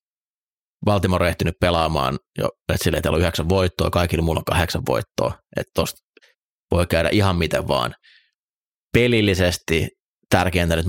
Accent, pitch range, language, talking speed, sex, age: native, 80-95 Hz, Finnish, 130 wpm, male, 30-49